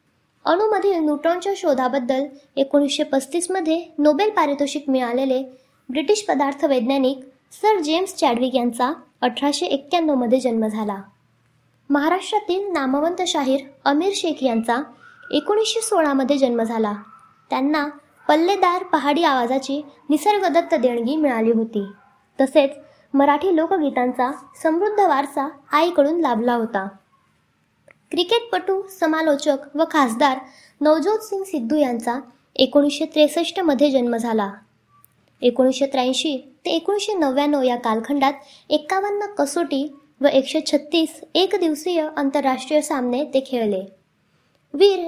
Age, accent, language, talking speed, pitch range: 20-39, native, Marathi, 100 wpm, 255-330 Hz